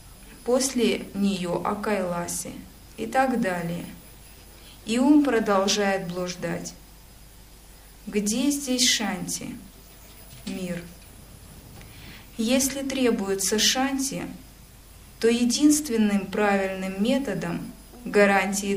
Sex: female